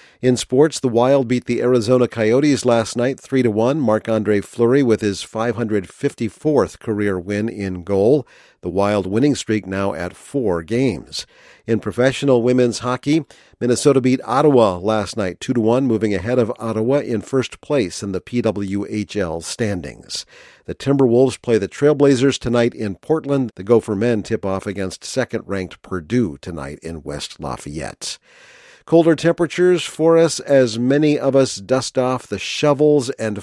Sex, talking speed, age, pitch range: male, 145 wpm, 50-69, 105-135 Hz